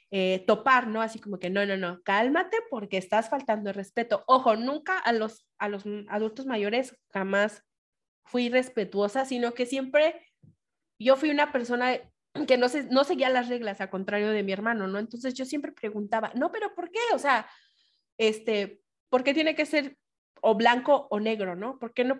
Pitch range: 205-265 Hz